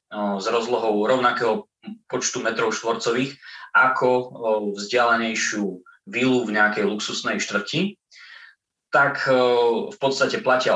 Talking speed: 95 wpm